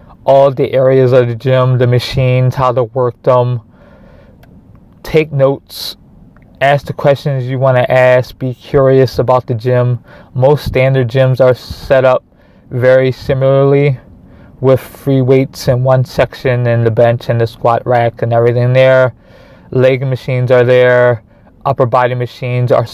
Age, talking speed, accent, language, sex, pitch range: 20-39, 150 wpm, American, English, male, 125-140 Hz